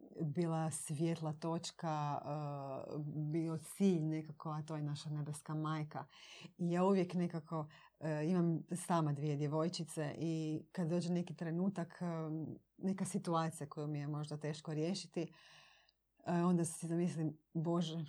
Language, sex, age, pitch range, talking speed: Croatian, female, 30-49, 155-180 Hz, 125 wpm